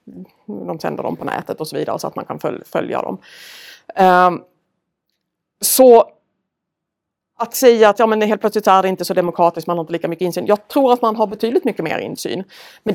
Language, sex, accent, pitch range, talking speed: Swedish, female, native, 170-225 Hz, 200 wpm